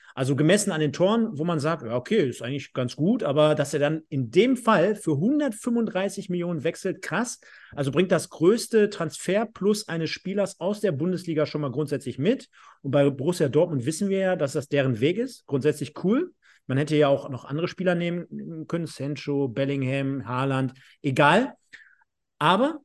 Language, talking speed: German, 175 wpm